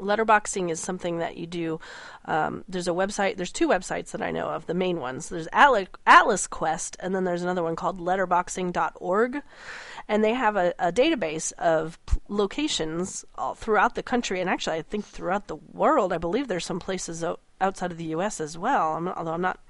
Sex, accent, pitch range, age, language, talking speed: female, American, 170-210 Hz, 30-49, English, 195 wpm